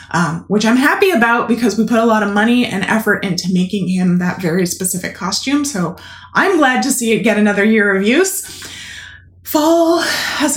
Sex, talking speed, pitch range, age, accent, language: female, 195 wpm, 190-245 Hz, 20-39, American, English